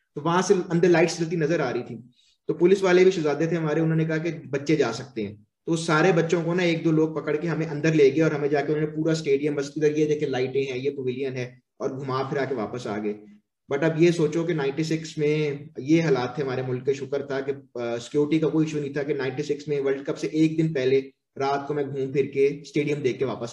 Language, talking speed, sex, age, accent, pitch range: English, 190 wpm, male, 20-39, Indian, 125-160 Hz